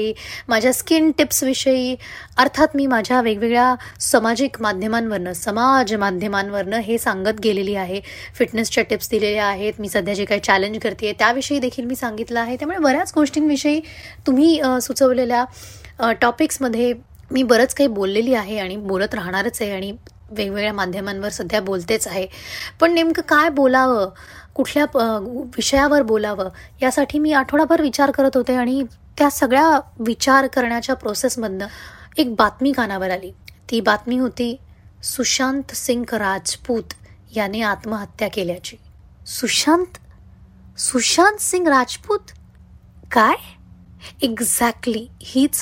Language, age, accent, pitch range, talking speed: Marathi, 20-39, native, 210-275 Hz, 120 wpm